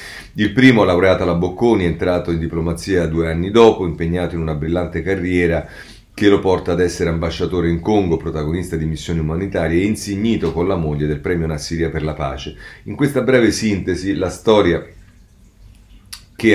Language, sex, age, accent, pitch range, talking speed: Italian, male, 40-59, native, 80-95 Hz, 175 wpm